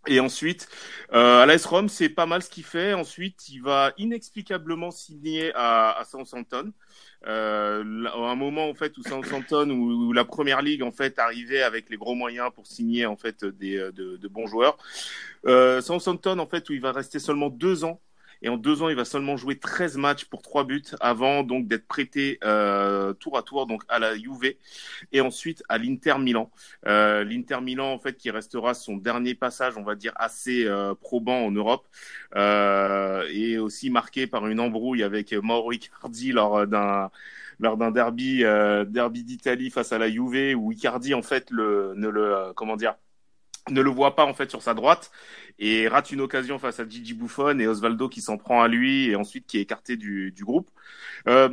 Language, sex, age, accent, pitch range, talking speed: French, male, 30-49, French, 110-145 Hz, 205 wpm